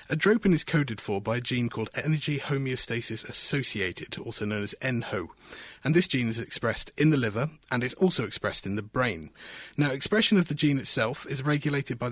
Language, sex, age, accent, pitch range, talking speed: English, male, 30-49, British, 115-150 Hz, 195 wpm